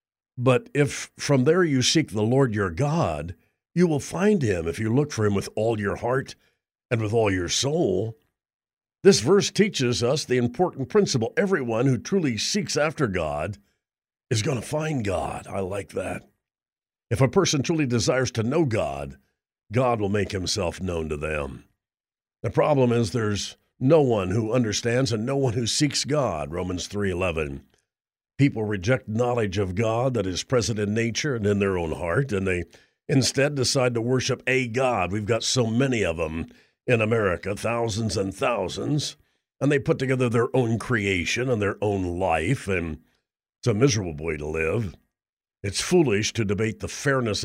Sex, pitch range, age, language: male, 100-135 Hz, 50-69, English